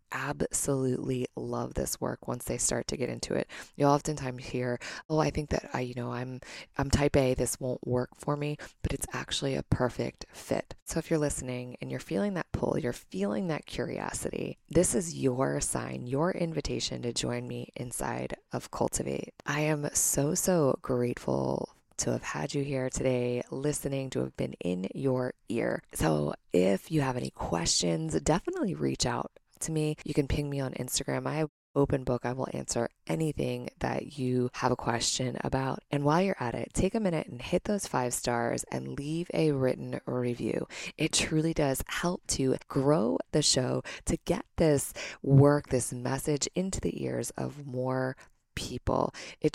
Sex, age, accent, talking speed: female, 20-39, American, 180 wpm